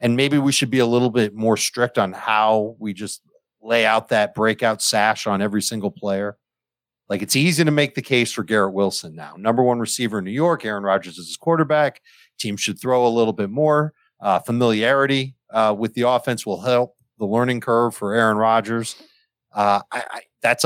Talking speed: 200 wpm